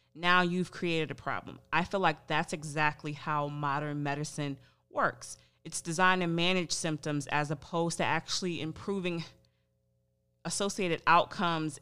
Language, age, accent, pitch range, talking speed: English, 30-49, American, 145-175 Hz, 130 wpm